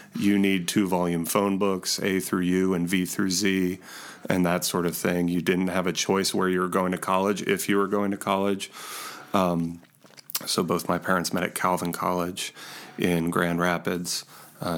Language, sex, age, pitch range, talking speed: English, male, 30-49, 90-110 Hz, 195 wpm